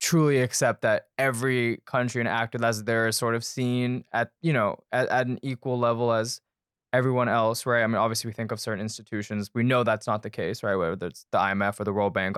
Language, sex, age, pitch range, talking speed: English, male, 20-39, 115-135 Hz, 235 wpm